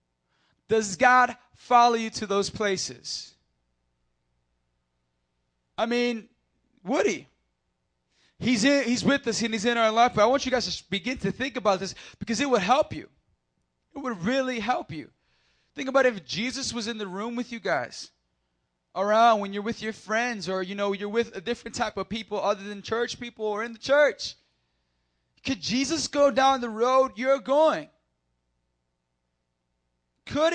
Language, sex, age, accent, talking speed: English, male, 20-39, American, 165 wpm